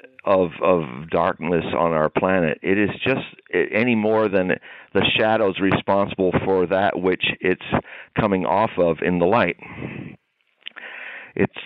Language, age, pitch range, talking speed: English, 50-69, 95-115 Hz, 135 wpm